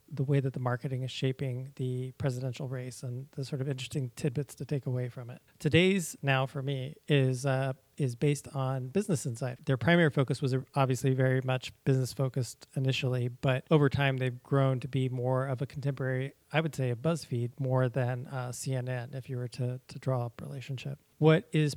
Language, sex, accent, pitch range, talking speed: English, male, American, 130-145 Hz, 200 wpm